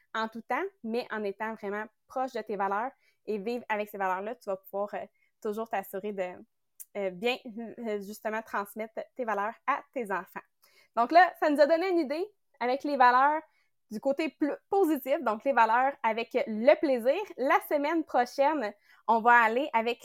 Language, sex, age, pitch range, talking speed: English, female, 20-39, 215-275 Hz, 175 wpm